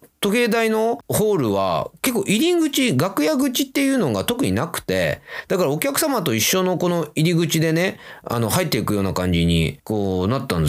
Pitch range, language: 100-165 Hz, Japanese